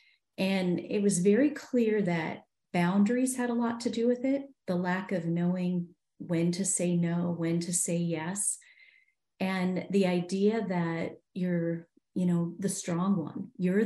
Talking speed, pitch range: 160 wpm, 170-205 Hz